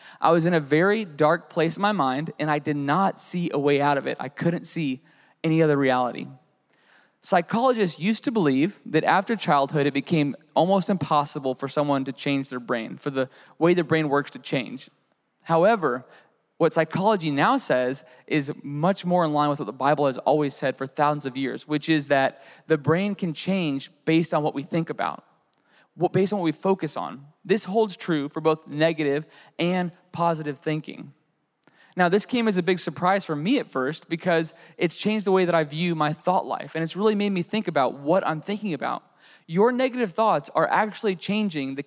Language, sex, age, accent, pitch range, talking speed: English, male, 20-39, American, 145-190 Hz, 200 wpm